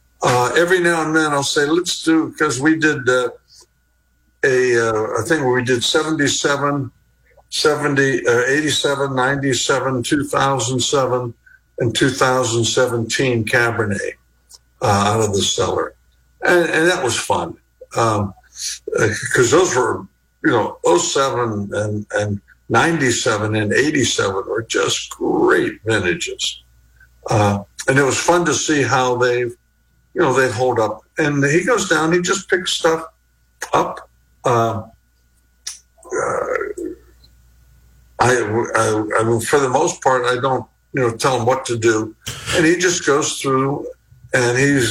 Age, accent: 60-79, American